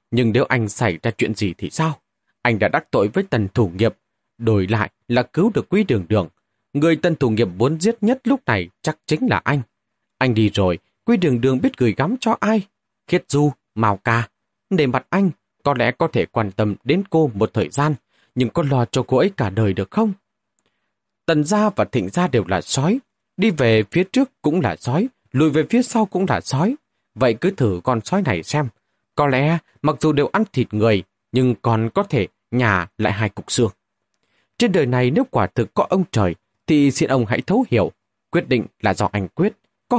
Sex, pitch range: male, 110-175 Hz